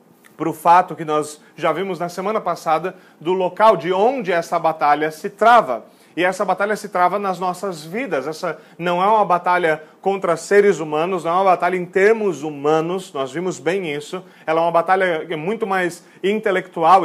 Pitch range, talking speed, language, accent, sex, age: 165-195 Hz, 185 wpm, Portuguese, Brazilian, male, 40-59